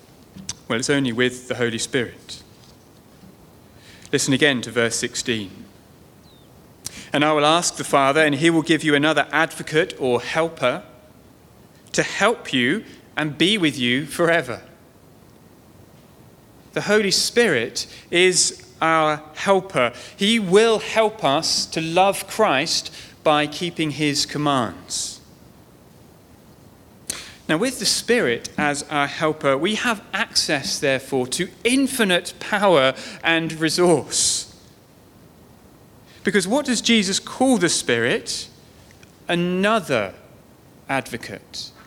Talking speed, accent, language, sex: 110 wpm, British, English, male